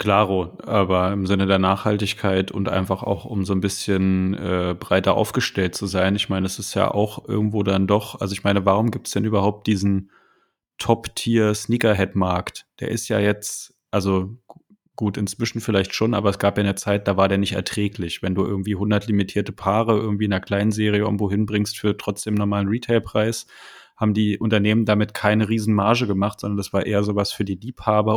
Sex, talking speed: male, 195 wpm